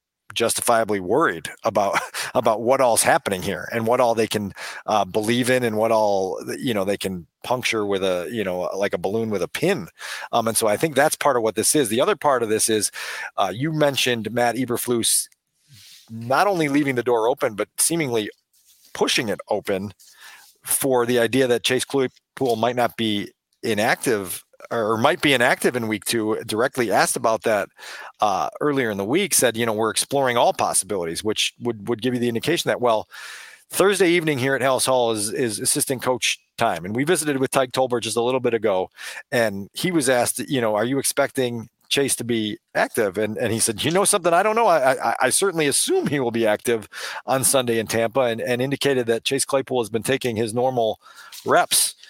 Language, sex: English, male